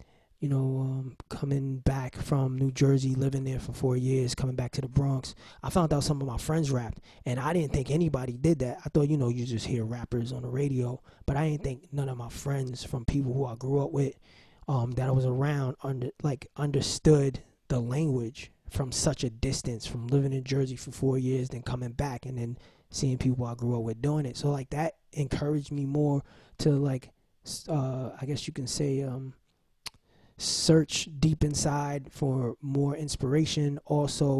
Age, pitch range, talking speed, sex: 20-39, 130-145 Hz, 200 wpm, male